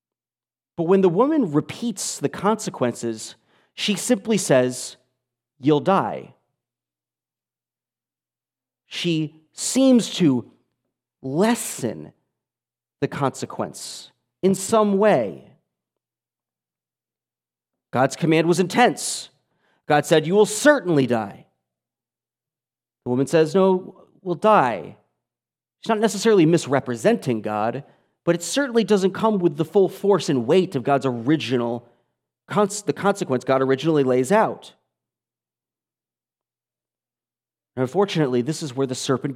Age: 40-59